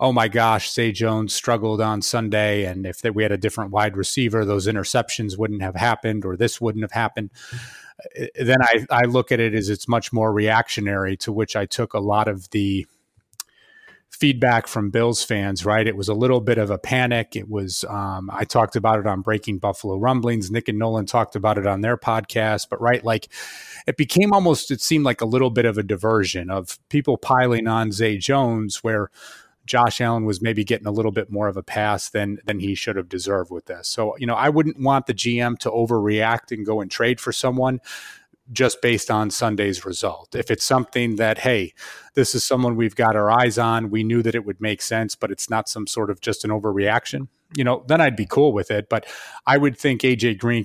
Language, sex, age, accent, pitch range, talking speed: English, male, 30-49, American, 105-120 Hz, 220 wpm